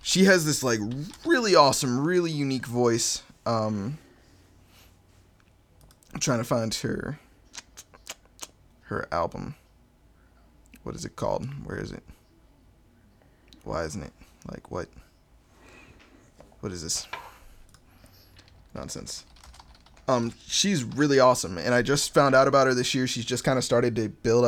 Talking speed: 130 wpm